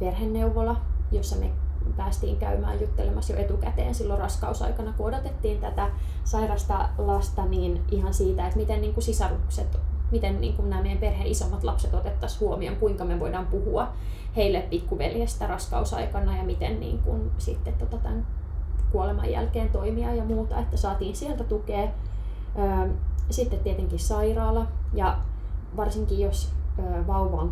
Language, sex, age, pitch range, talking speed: Finnish, female, 20-39, 70-85 Hz, 120 wpm